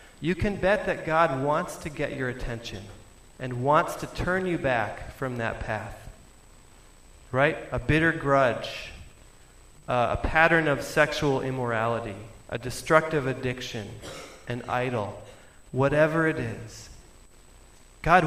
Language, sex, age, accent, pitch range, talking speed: English, male, 30-49, American, 115-165 Hz, 125 wpm